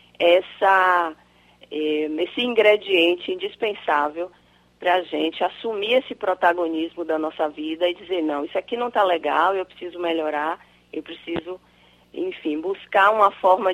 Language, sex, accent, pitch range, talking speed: Portuguese, female, Brazilian, 165-220 Hz, 125 wpm